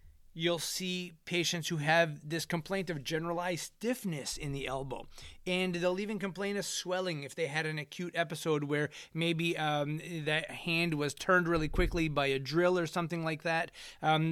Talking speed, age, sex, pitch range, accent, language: 175 wpm, 30-49, male, 140-170 Hz, American, English